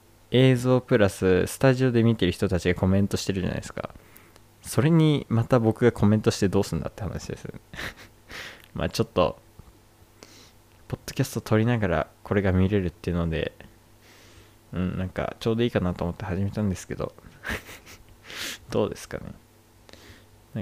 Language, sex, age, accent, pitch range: Japanese, male, 20-39, native, 95-110 Hz